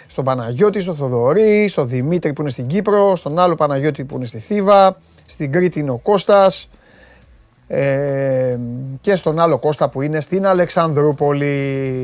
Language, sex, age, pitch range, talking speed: Greek, male, 30-49, 135-185 Hz, 150 wpm